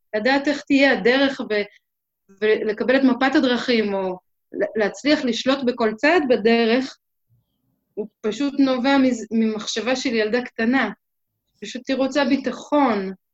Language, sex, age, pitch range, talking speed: Hebrew, female, 20-39, 215-270 Hz, 120 wpm